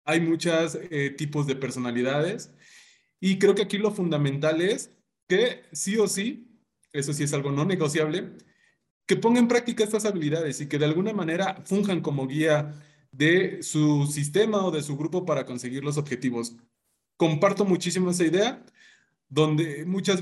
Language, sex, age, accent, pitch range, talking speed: Spanish, male, 30-49, Mexican, 145-200 Hz, 160 wpm